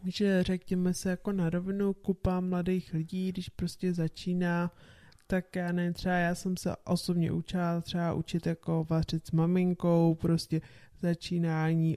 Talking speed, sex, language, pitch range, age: 145 wpm, male, Czech, 165-180 Hz, 20-39